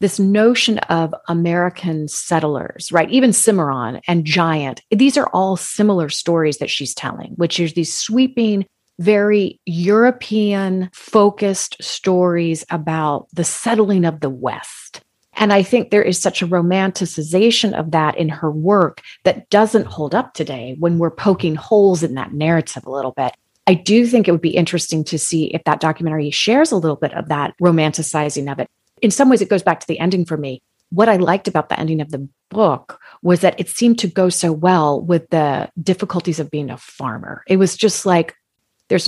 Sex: female